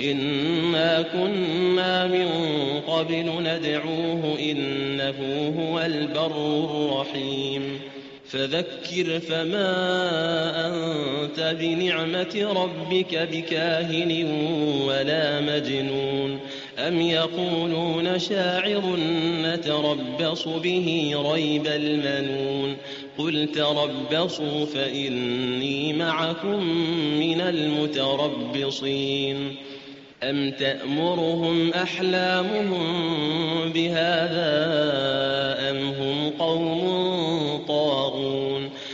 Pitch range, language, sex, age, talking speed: 140-165 Hz, Arabic, male, 30-49, 60 wpm